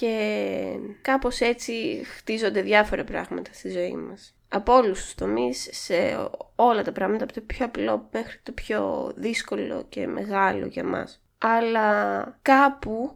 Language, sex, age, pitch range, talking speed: Greek, female, 20-39, 190-245 Hz, 135 wpm